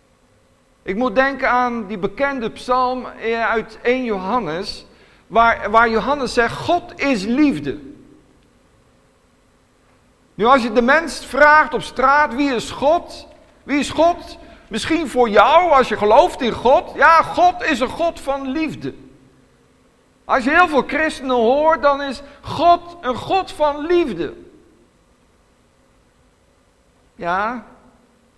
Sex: male